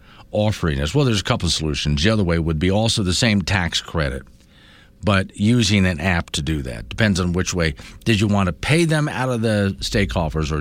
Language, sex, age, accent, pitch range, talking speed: English, male, 50-69, American, 80-125 Hz, 230 wpm